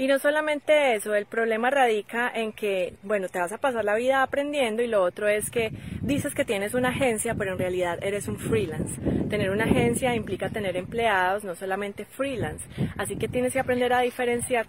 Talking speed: 200 wpm